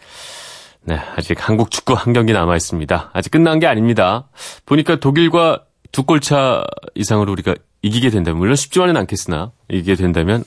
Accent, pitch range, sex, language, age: native, 95-135 Hz, male, Korean, 30-49